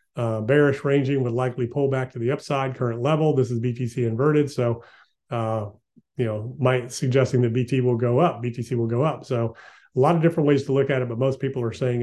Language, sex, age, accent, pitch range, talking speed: English, male, 30-49, American, 115-130 Hz, 230 wpm